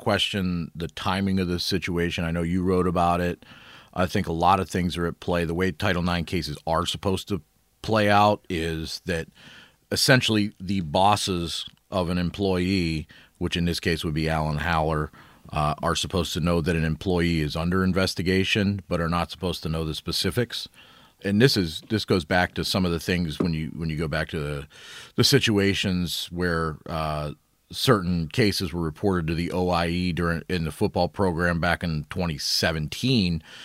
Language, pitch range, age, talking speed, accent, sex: English, 85-100 Hz, 40-59, 185 wpm, American, male